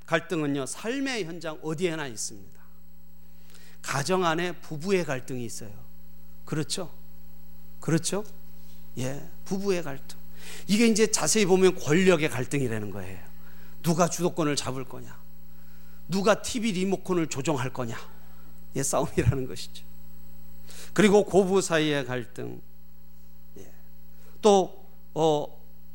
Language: Korean